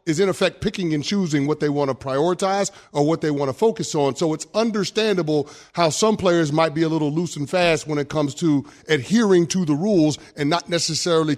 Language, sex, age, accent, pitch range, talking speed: English, male, 30-49, American, 145-180 Hz, 220 wpm